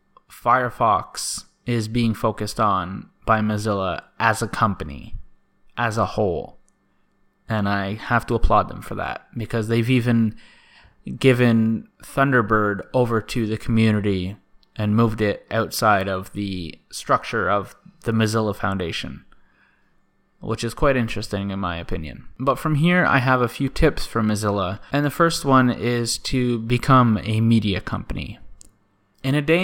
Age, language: 20-39, English